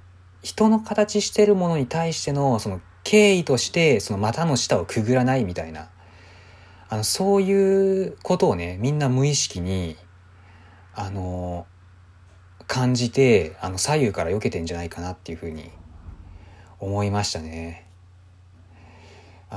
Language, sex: Japanese, male